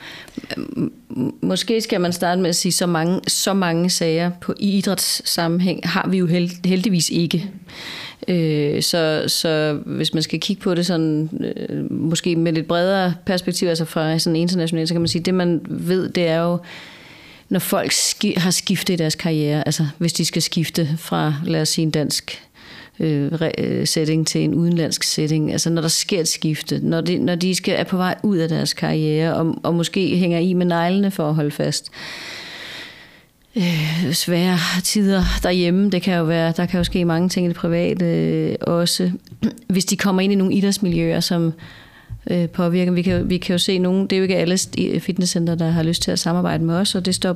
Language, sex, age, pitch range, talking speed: Danish, female, 30-49, 160-185 Hz, 190 wpm